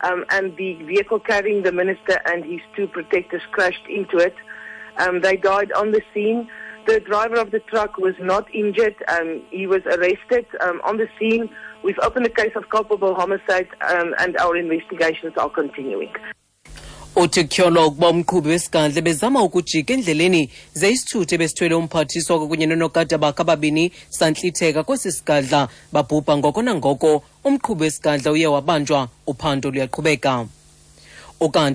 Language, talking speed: English, 140 wpm